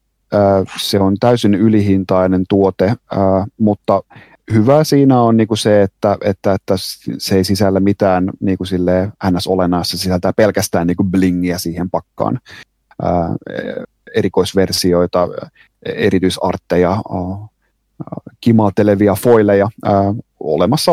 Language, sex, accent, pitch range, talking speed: Finnish, male, native, 90-110 Hz, 85 wpm